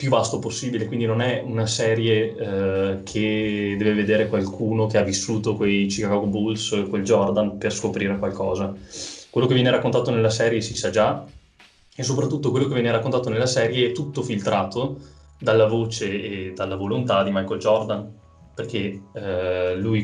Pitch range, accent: 100-115 Hz, native